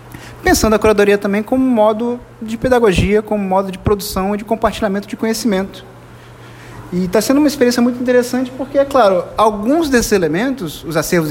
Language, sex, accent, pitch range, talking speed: Portuguese, male, Brazilian, 175-250 Hz, 170 wpm